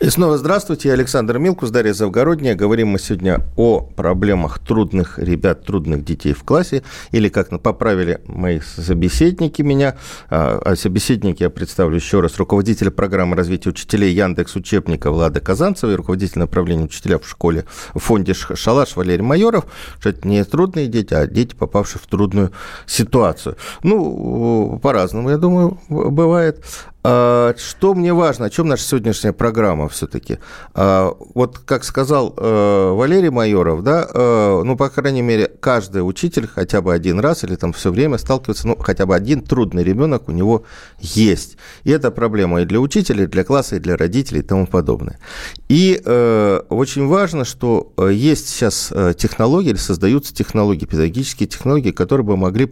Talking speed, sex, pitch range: 155 wpm, male, 95-135 Hz